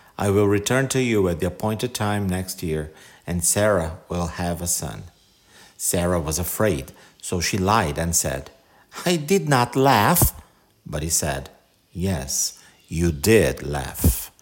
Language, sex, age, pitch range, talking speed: English, male, 50-69, 85-110 Hz, 150 wpm